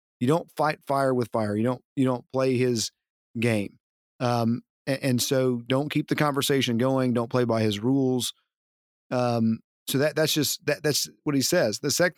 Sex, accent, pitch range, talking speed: male, American, 120-145 Hz, 190 wpm